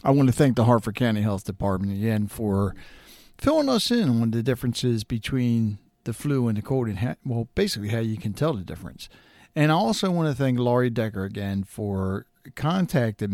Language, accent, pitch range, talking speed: English, American, 105-150 Hz, 195 wpm